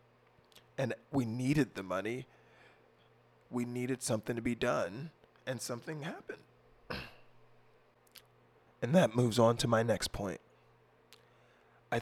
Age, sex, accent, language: 20-39, male, American, English